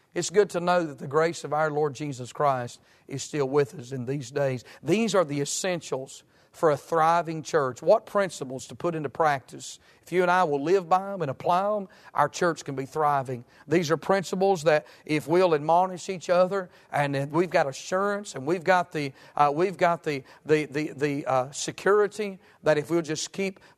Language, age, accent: English, 50-69, American